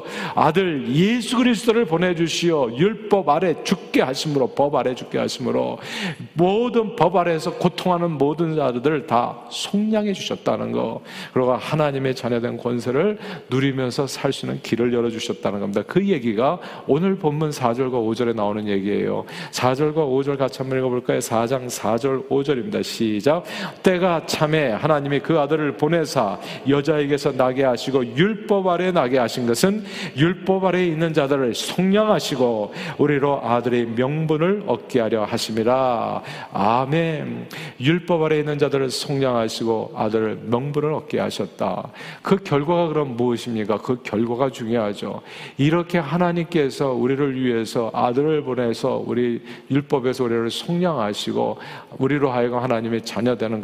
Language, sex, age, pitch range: Korean, male, 40-59, 125-170 Hz